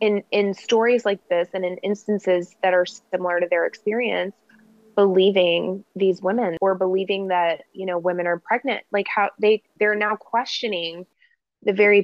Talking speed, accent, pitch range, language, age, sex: 165 wpm, American, 180-205 Hz, English, 20-39, female